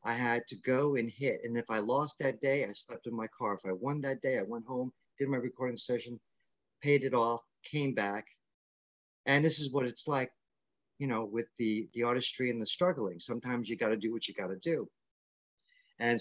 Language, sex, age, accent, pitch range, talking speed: English, male, 50-69, American, 110-130 Hz, 215 wpm